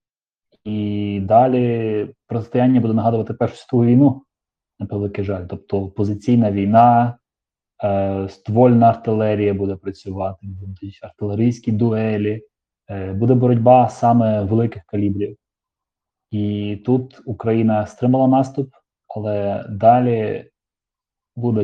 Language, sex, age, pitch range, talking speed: Ukrainian, male, 20-39, 100-120 Hz, 95 wpm